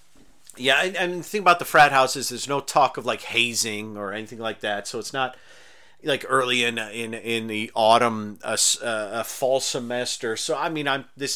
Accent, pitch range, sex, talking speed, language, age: American, 115-155 Hz, male, 205 wpm, English, 40-59